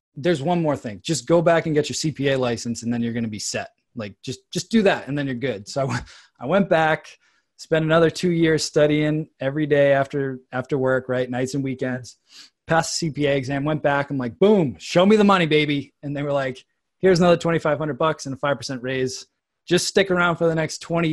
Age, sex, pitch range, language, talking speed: 20-39, male, 130-160 Hz, English, 225 wpm